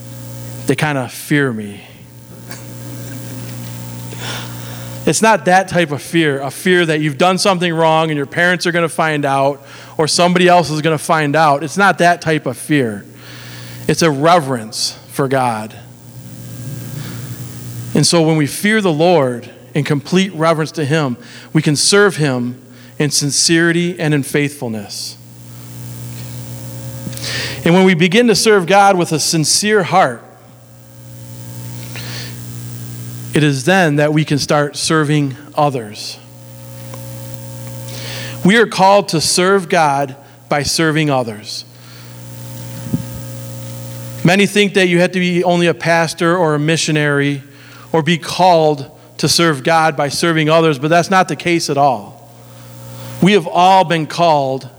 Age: 40-59